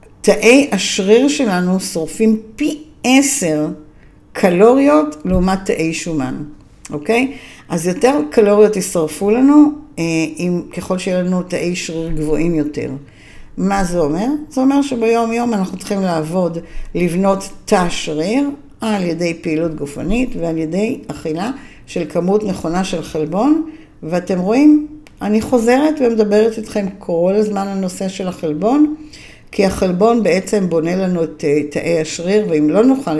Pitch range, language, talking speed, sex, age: 160-220 Hz, Hebrew, 125 wpm, female, 60-79